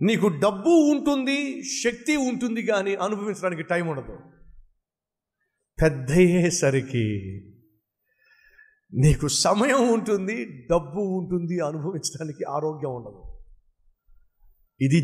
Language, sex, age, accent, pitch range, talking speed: Telugu, male, 50-69, native, 125-170 Hz, 75 wpm